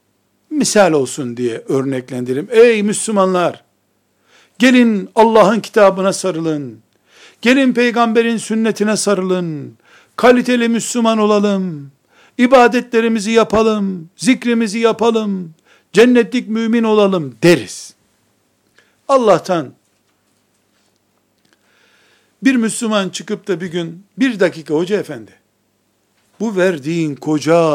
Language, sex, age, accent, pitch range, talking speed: Turkish, male, 60-79, native, 140-225 Hz, 85 wpm